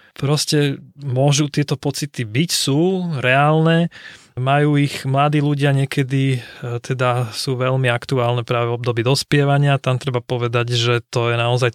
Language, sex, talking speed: Slovak, male, 135 wpm